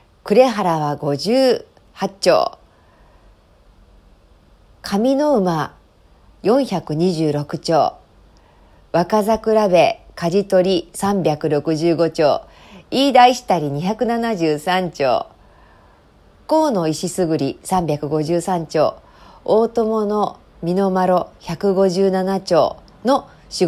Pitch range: 150-220 Hz